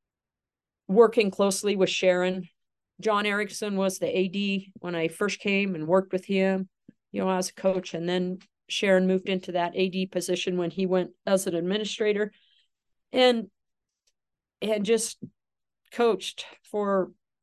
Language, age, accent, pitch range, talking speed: English, 50-69, American, 175-210 Hz, 140 wpm